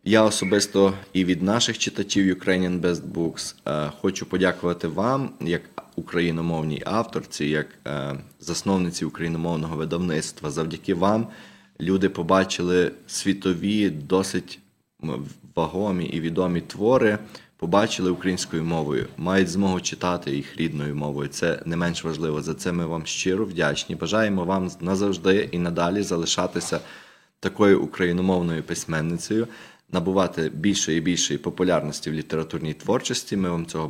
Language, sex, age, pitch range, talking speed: English, male, 20-39, 85-100 Hz, 120 wpm